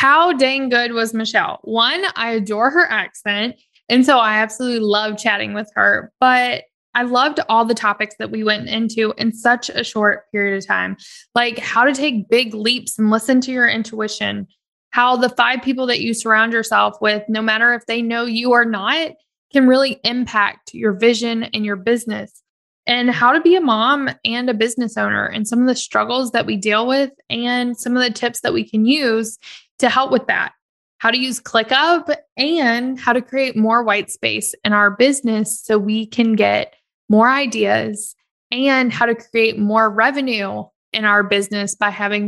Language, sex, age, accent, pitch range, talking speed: English, female, 20-39, American, 215-250 Hz, 190 wpm